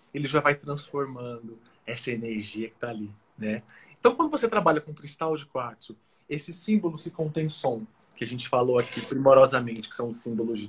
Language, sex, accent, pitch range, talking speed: Portuguese, male, Brazilian, 120-175 Hz, 195 wpm